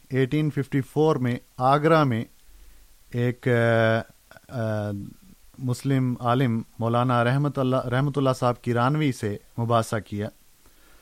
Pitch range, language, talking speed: 120-150 Hz, Urdu, 110 wpm